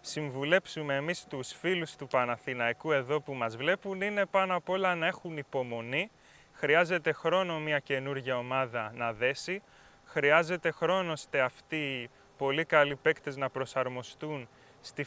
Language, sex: Greek, male